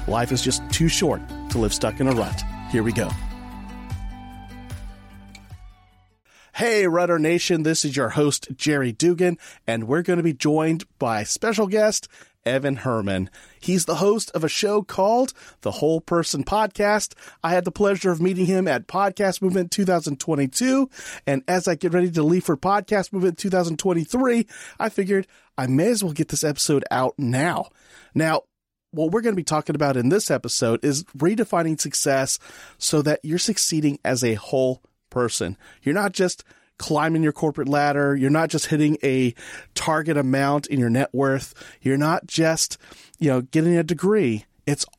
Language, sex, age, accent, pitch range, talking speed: English, male, 40-59, American, 130-180 Hz, 170 wpm